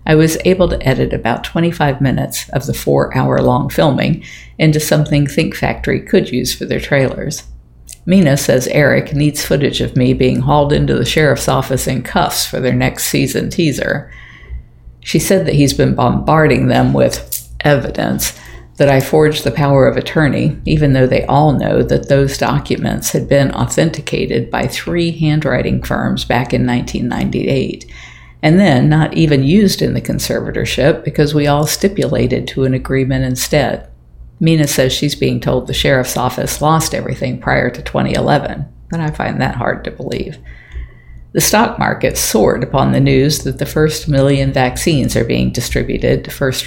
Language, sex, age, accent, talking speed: English, female, 50-69, American, 165 wpm